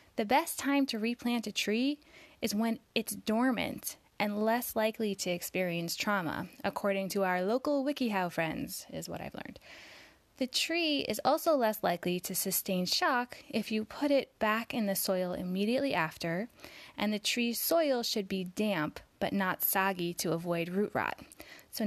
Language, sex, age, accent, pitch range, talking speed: English, female, 10-29, American, 190-265 Hz, 165 wpm